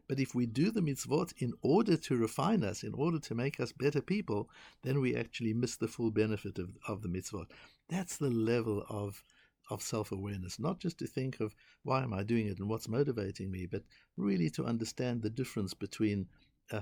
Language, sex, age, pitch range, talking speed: English, male, 60-79, 100-135 Hz, 205 wpm